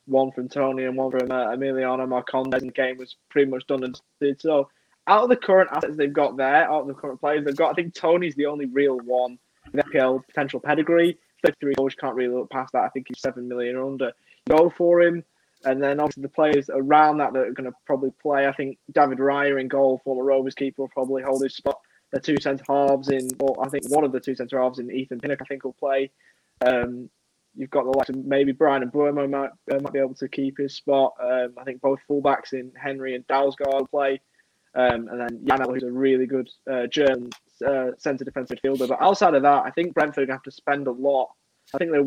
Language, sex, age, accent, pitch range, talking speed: English, male, 20-39, British, 130-140 Hz, 240 wpm